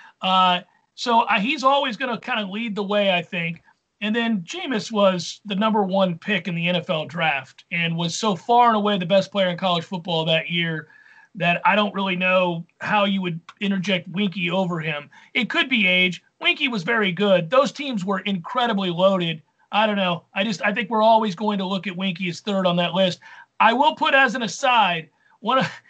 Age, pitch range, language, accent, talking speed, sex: 40-59, 195-260 Hz, English, American, 210 wpm, male